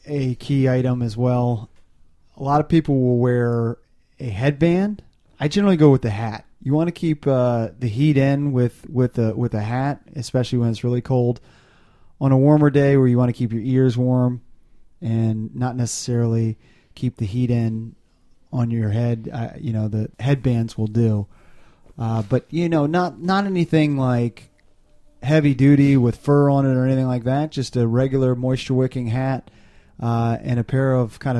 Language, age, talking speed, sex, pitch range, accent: English, 30-49, 180 wpm, male, 115-140 Hz, American